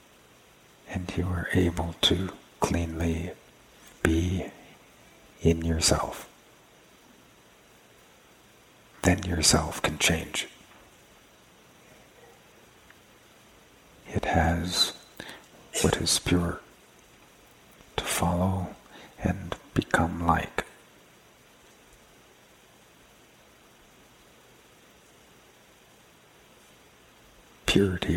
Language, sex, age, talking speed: English, male, 50-69, 50 wpm